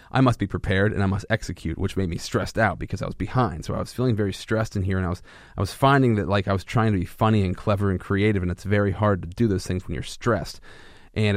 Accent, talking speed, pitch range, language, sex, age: American, 290 wpm, 95-110 Hz, English, male, 30-49